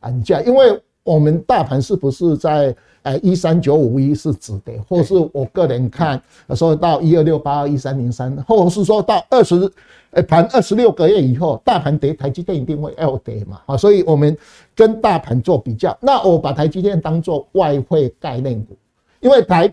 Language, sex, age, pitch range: Chinese, male, 50-69, 125-175 Hz